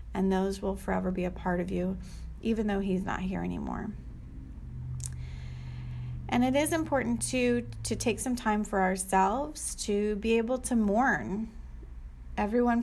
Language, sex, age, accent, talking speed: English, female, 30-49, American, 150 wpm